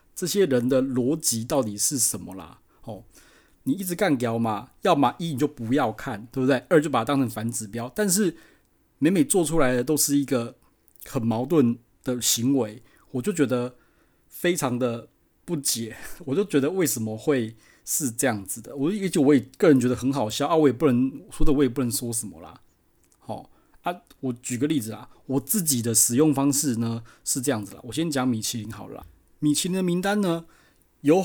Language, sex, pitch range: Chinese, male, 115-150 Hz